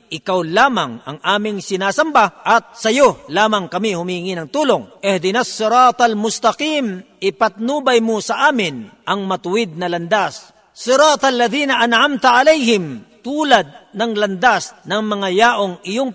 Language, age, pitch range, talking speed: Filipino, 50-69, 190-240 Hz, 130 wpm